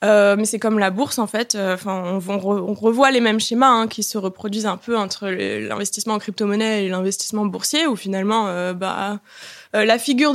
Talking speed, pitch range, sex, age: 210 wpm, 200-240 Hz, female, 20-39